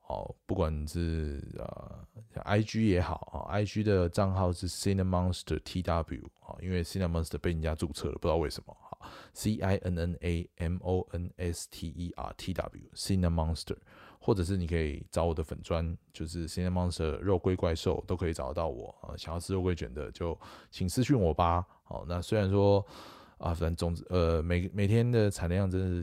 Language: Chinese